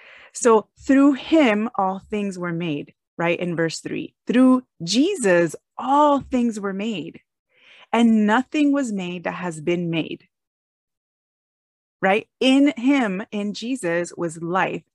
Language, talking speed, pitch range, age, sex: English, 130 wpm, 160-210 Hz, 30-49, female